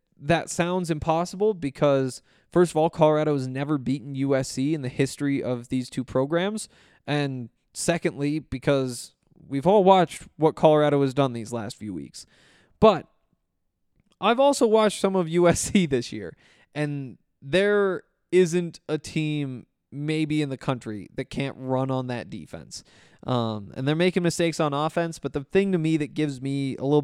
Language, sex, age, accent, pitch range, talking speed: English, male, 20-39, American, 130-175 Hz, 165 wpm